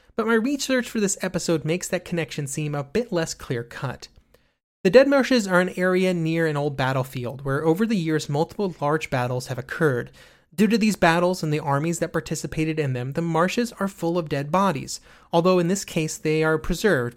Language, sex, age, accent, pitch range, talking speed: English, male, 30-49, American, 140-185 Hz, 205 wpm